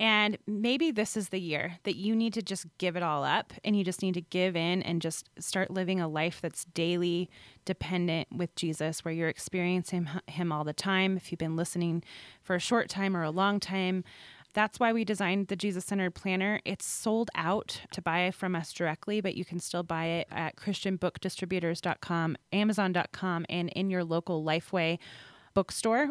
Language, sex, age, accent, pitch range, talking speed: English, female, 20-39, American, 175-210 Hz, 190 wpm